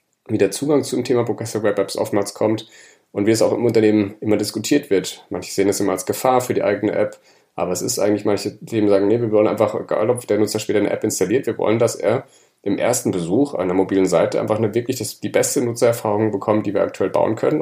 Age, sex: 30-49, male